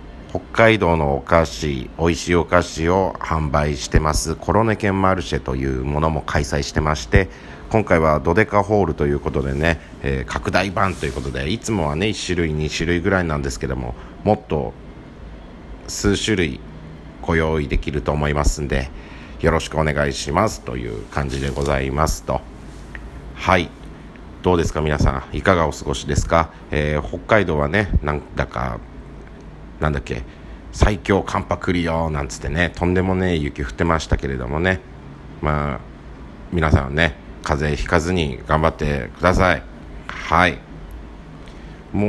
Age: 50-69